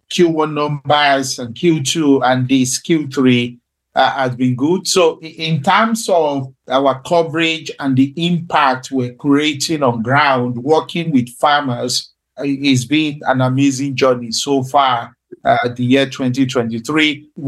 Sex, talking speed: male, 130 wpm